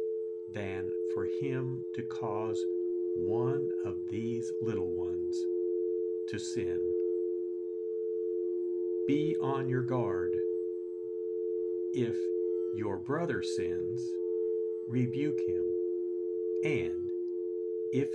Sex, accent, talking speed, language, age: male, American, 80 wpm, English, 50-69